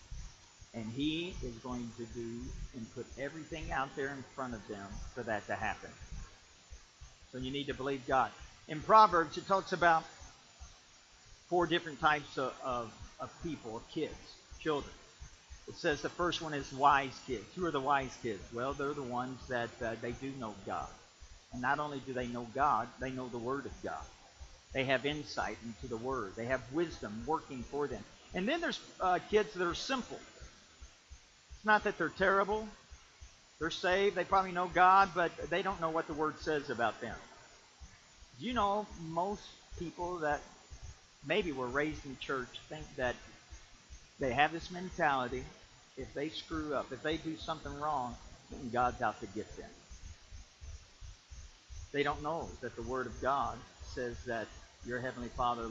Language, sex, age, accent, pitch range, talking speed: English, male, 50-69, American, 115-165 Hz, 170 wpm